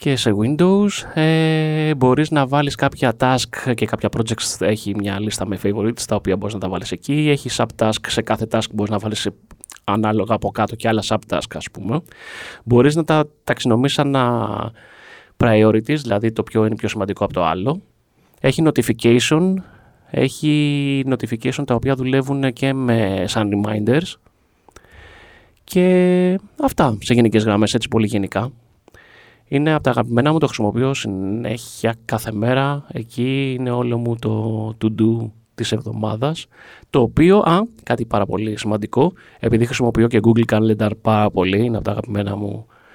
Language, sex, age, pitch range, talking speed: Greek, male, 20-39, 110-135 Hz, 155 wpm